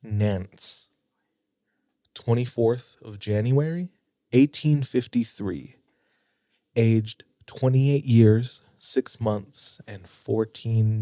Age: 20-39